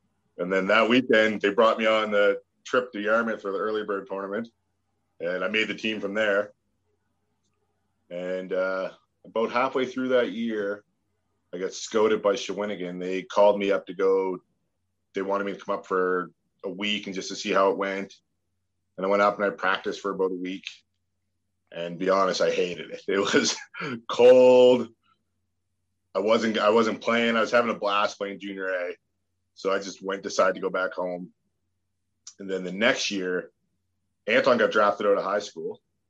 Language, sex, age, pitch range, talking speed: English, male, 30-49, 95-110 Hz, 185 wpm